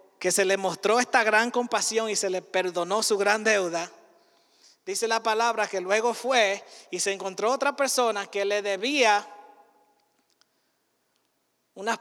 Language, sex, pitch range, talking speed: Spanish, male, 175-220 Hz, 145 wpm